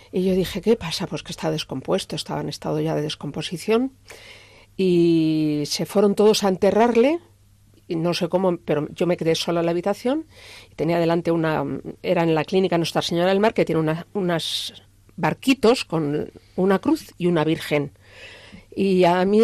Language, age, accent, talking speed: Spanish, 50-69, Spanish, 175 wpm